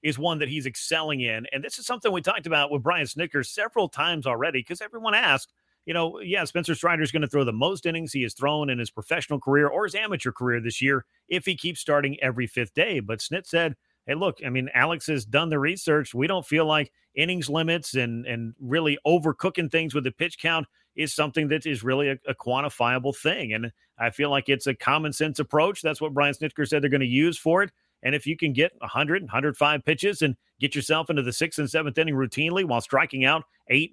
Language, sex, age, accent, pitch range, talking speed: English, male, 40-59, American, 130-165 Hz, 235 wpm